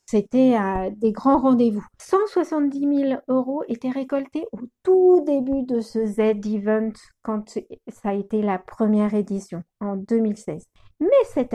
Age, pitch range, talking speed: 60-79, 215-285 Hz, 140 wpm